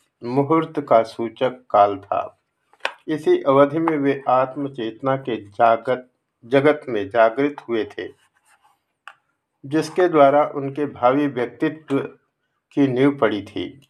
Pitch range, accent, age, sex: 120-145 Hz, native, 50-69, male